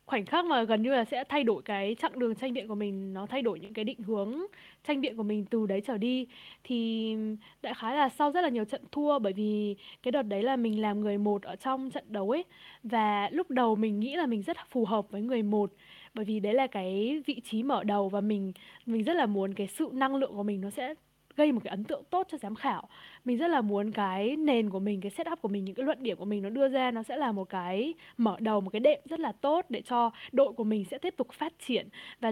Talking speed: 270 wpm